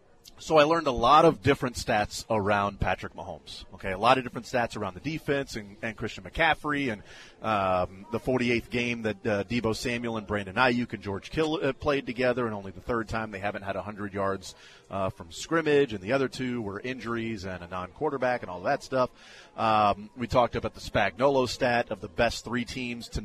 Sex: male